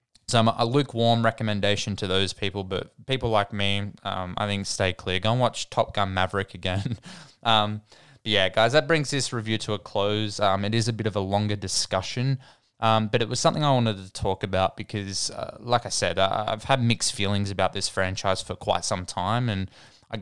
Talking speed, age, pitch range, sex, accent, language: 210 wpm, 20-39, 100-115 Hz, male, Australian, English